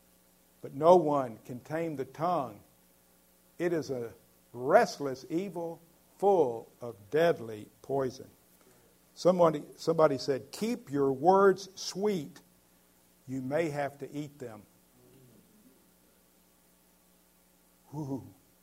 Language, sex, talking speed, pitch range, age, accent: English, male, 95 wpm, 100-150 Hz, 50-69, American